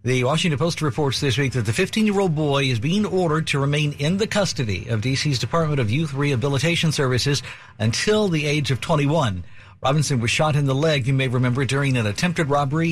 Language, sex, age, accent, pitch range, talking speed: English, male, 50-69, American, 125-165 Hz, 200 wpm